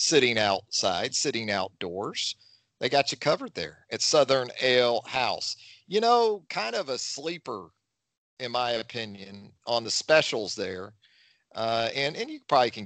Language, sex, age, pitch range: English, male, 40-59, 115-150 Hz